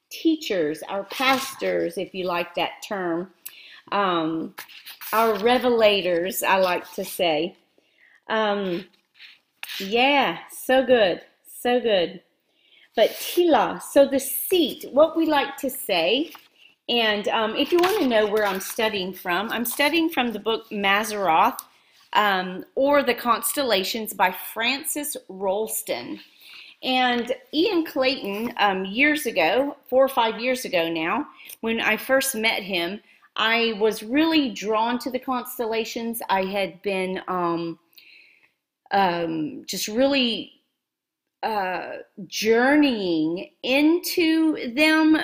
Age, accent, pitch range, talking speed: 40-59, American, 190-270 Hz, 120 wpm